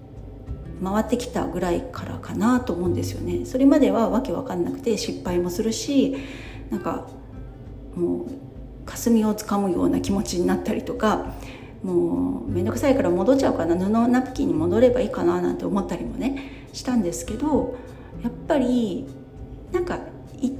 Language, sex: Japanese, female